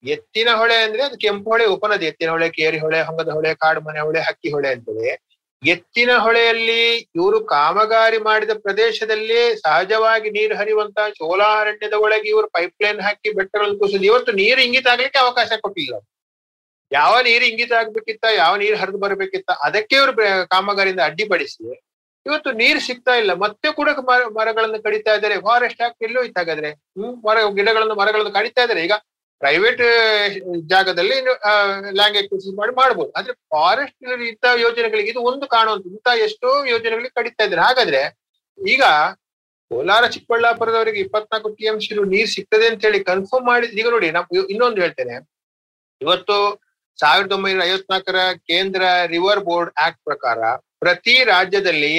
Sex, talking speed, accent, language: male, 135 wpm, native, Kannada